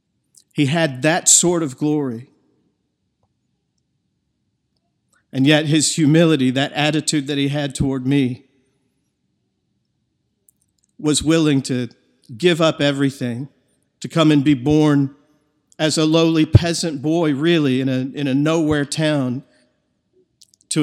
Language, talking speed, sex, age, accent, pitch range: English, 120 wpm, male, 50-69, American, 135-160 Hz